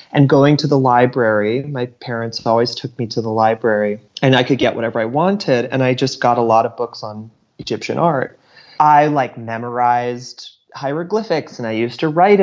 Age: 30-49